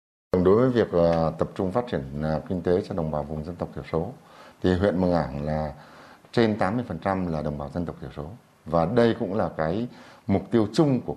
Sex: male